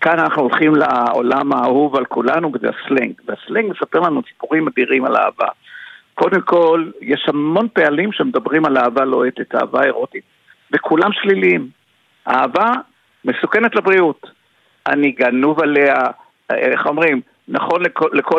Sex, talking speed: male, 130 wpm